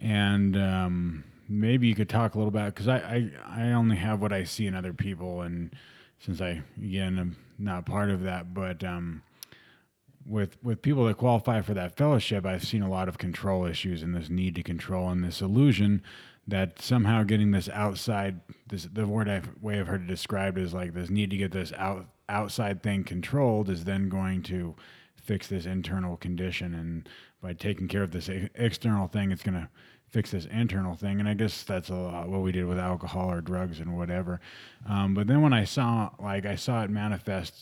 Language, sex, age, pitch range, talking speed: English, male, 30-49, 90-110 Hz, 205 wpm